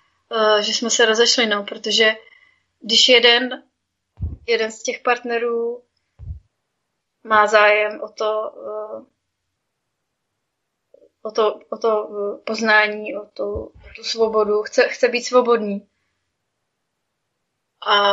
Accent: native